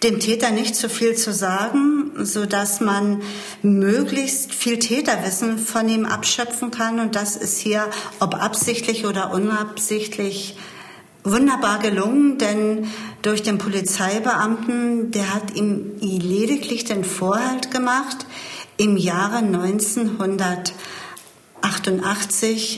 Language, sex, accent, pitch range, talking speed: German, female, German, 195-235 Hz, 110 wpm